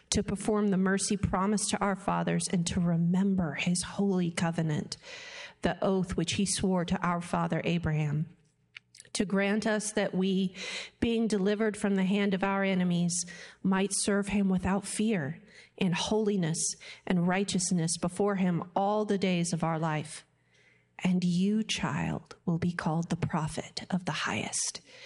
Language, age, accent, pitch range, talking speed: English, 40-59, American, 165-195 Hz, 155 wpm